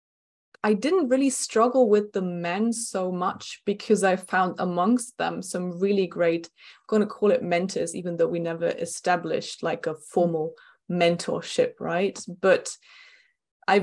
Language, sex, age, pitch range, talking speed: English, female, 20-39, 175-220 Hz, 150 wpm